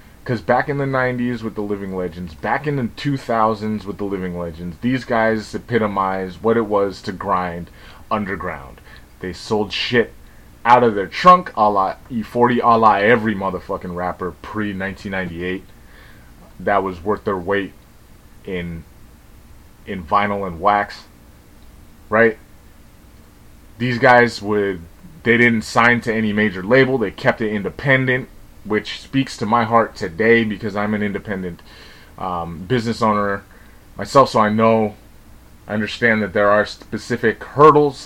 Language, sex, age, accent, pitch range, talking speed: English, male, 20-39, American, 95-115 Hz, 145 wpm